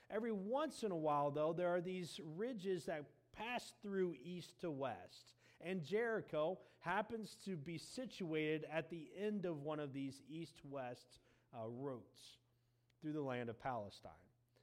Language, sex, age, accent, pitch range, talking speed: English, male, 40-59, American, 145-205 Hz, 150 wpm